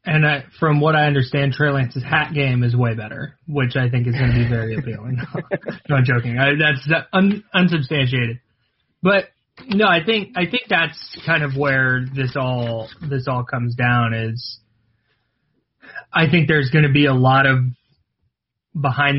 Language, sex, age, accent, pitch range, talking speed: English, male, 20-39, American, 125-165 Hz, 170 wpm